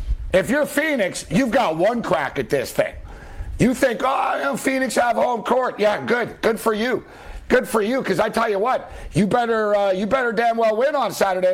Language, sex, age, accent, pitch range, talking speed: English, male, 60-79, American, 180-225 Hz, 210 wpm